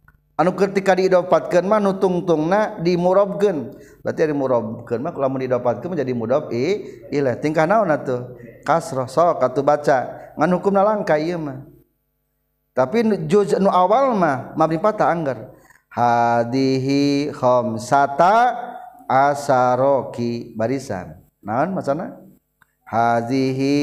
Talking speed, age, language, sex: 115 wpm, 50-69, Indonesian, male